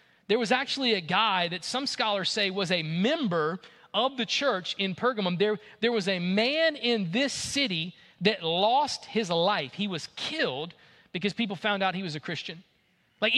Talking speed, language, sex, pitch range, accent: 185 wpm, English, male, 160-225 Hz, American